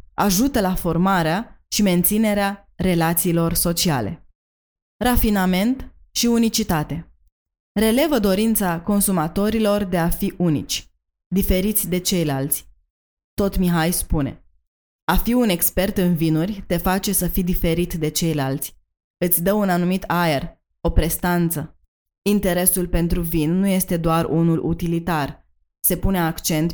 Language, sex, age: Romanian, female, 20-39